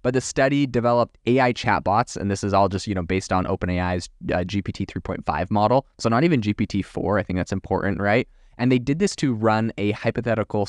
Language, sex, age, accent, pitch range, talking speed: English, male, 20-39, American, 95-120 Hz, 210 wpm